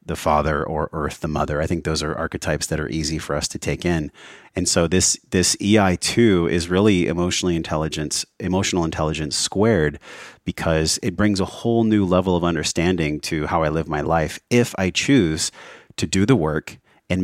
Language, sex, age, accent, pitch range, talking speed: English, male, 30-49, American, 80-105 Hz, 190 wpm